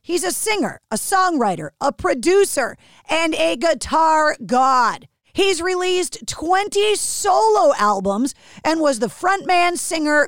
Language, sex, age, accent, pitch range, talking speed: English, female, 40-59, American, 225-320 Hz, 125 wpm